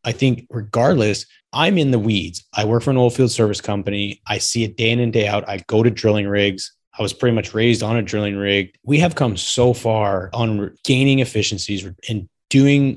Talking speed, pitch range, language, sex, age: 215 wpm, 105-130 Hz, English, male, 20-39